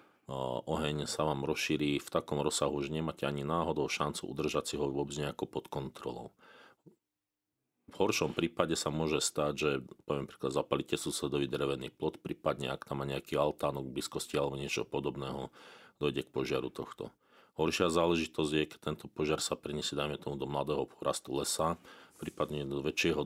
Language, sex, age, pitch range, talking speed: Slovak, male, 40-59, 70-75 Hz, 155 wpm